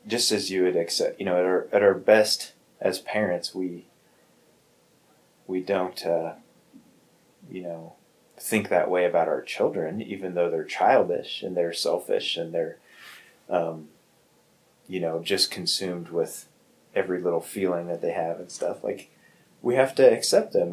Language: English